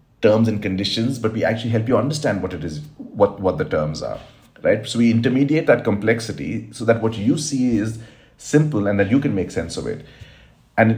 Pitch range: 100-120 Hz